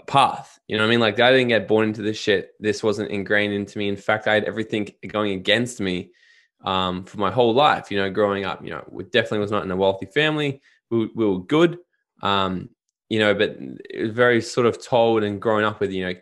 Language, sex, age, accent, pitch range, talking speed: English, male, 20-39, Australian, 100-125 Hz, 240 wpm